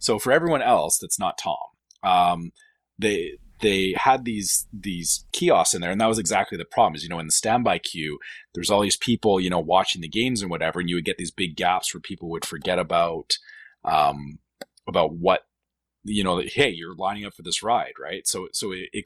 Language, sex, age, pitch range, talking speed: English, male, 30-49, 85-110 Hz, 220 wpm